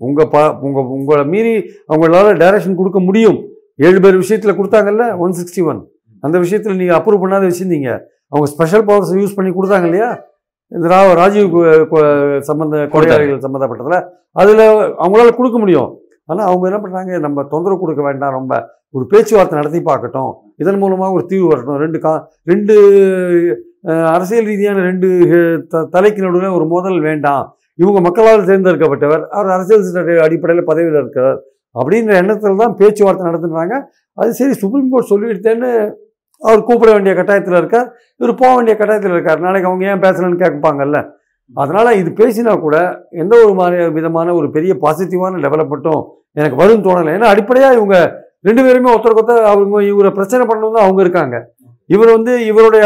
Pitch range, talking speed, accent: 160-215 Hz, 145 wpm, native